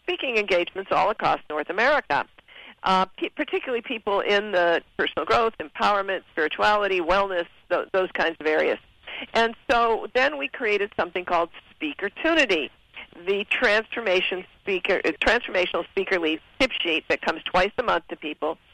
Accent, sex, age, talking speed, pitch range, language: American, female, 50-69, 145 wpm, 170-230 Hz, English